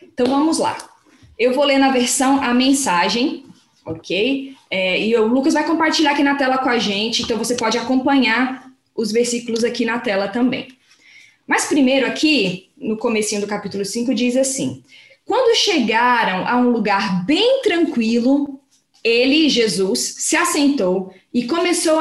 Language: Portuguese